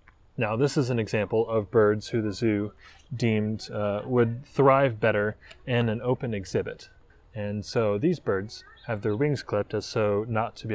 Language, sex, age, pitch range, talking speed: English, male, 20-39, 105-125 Hz, 180 wpm